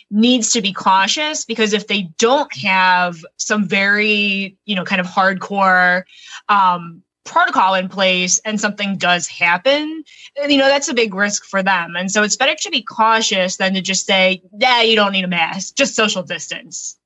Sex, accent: female, American